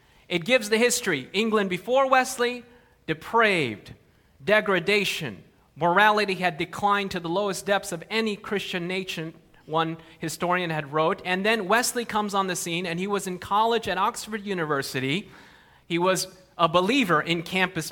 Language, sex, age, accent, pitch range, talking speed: English, male, 30-49, American, 180-220 Hz, 150 wpm